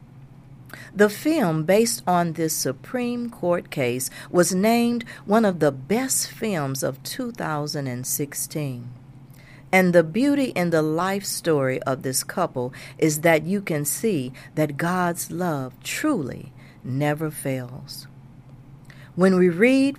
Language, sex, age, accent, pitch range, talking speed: English, female, 50-69, American, 135-185 Hz, 125 wpm